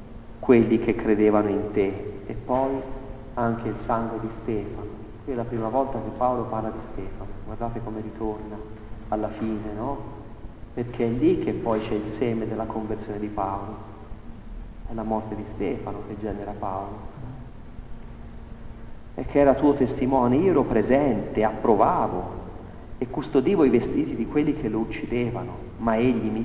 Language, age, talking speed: Italian, 40-59, 155 wpm